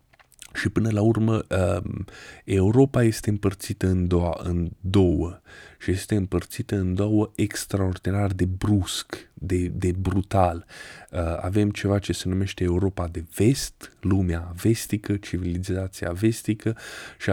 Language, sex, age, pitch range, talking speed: Romanian, male, 20-39, 90-105 Hz, 120 wpm